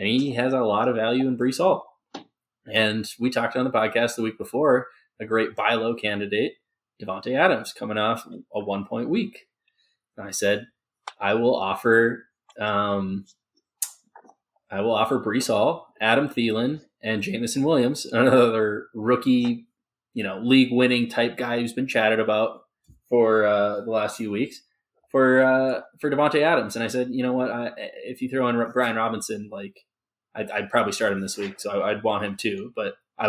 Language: English